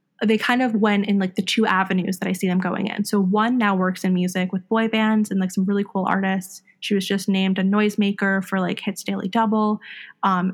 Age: 20-39